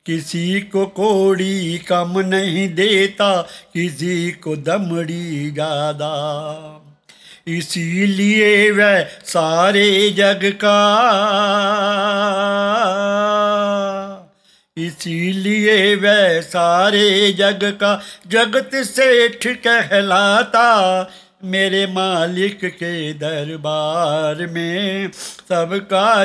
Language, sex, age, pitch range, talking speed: English, male, 50-69, 170-200 Hz, 65 wpm